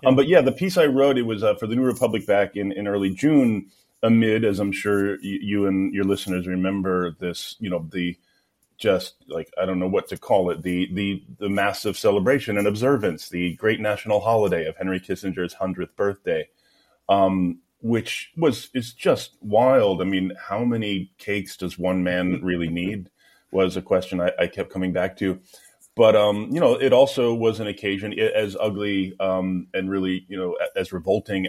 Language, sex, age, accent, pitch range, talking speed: English, male, 30-49, American, 90-105 Hz, 190 wpm